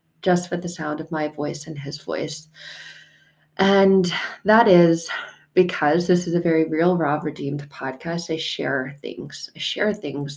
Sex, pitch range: female, 150-175 Hz